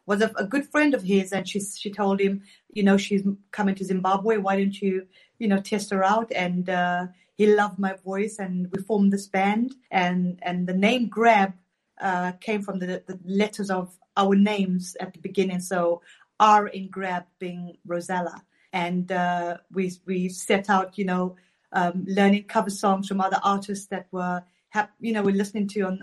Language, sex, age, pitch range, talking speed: English, female, 30-49, 190-220 Hz, 190 wpm